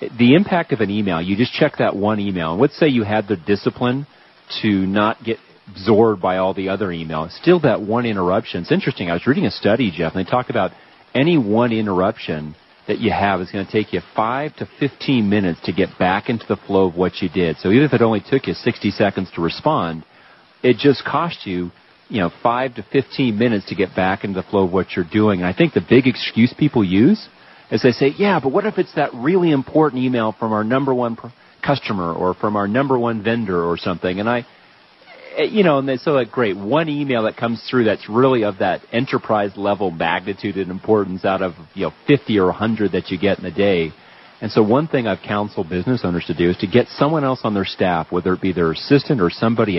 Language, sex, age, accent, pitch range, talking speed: English, male, 40-59, American, 95-130 Hz, 235 wpm